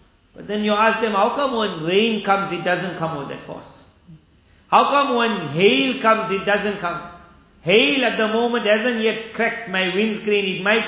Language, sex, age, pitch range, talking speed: English, male, 50-69, 150-195 Hz, 195 wpm